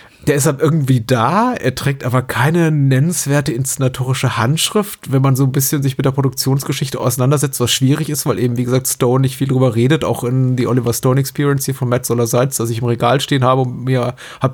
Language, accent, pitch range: German, German, 125-140 Hz